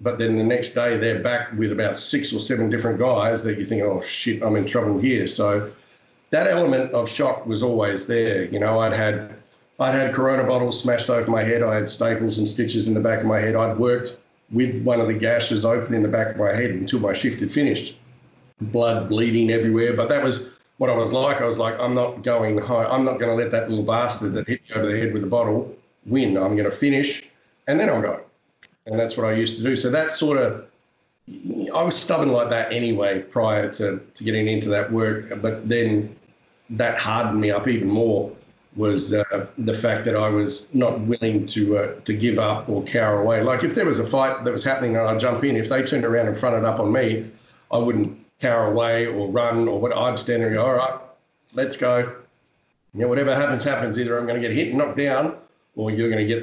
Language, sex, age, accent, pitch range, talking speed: English, male, 50-69, Australian, 110-125 Hz, 235 wpm